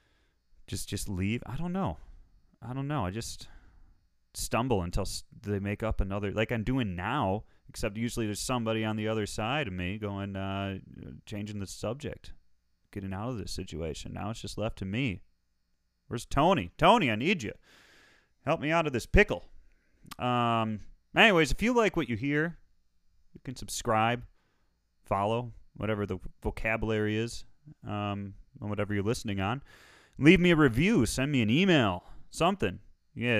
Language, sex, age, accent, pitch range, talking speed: English, male, 30-49, American, 95-130 Hz, 160 wpm